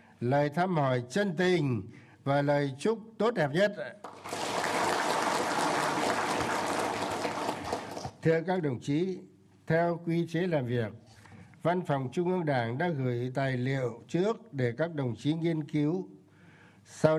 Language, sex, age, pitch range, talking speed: Vietnamese, male, 60-79, 135-175 Hz, 130 wpm